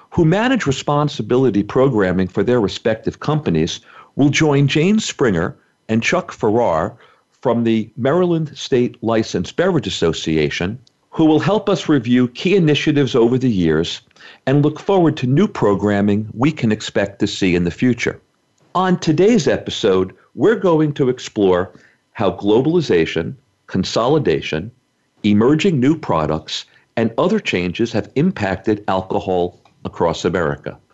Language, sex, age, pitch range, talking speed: English, male, 50-69, 95-145 Hz, 130 wpm